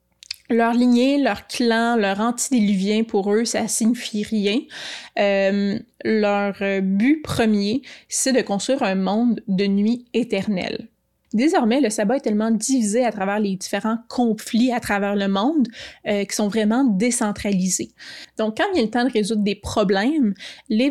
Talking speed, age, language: 160 wpm, 20-39, French